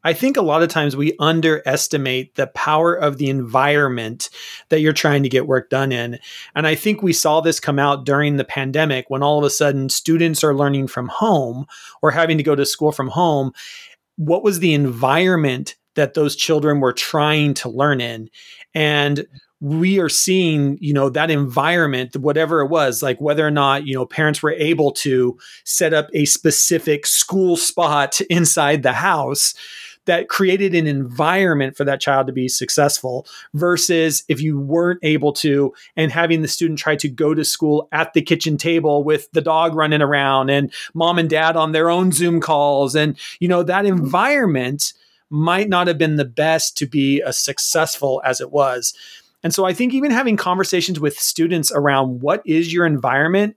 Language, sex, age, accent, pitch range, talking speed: English, male, 30-49, American, 140-165 Hz, 185 wpm